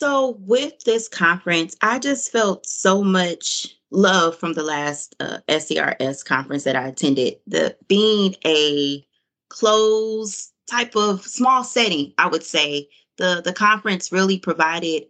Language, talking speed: English, 140 wpm